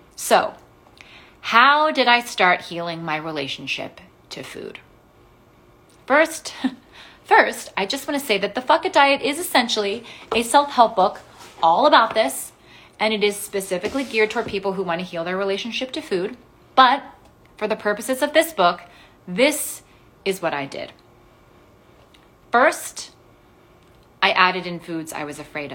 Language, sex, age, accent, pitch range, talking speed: English, female, 30-49, American, 175-230 Hz, 150 wpm